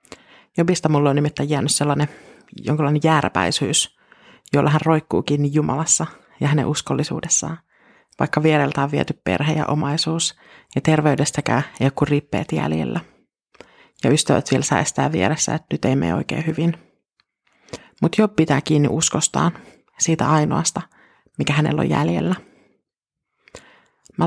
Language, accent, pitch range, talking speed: Finnish, native, 150-170 Hz, 125 wpm